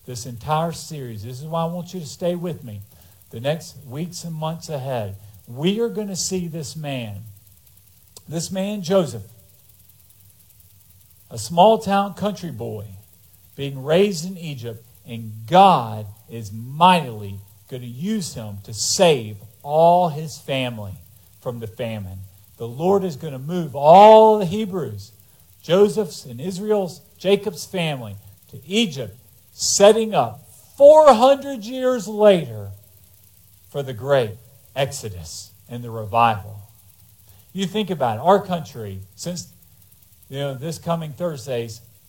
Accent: American